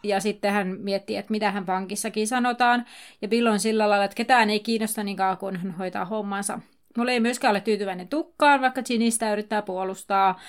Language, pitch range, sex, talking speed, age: Finnish, 195-245 Hz, female, 190 wpm, 30-49